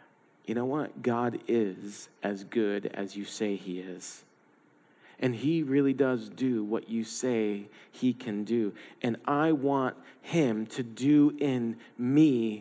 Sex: male